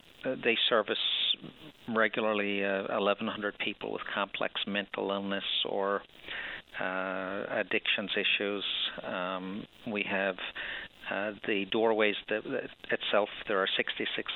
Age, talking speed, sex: 50-69, 85 wpm, male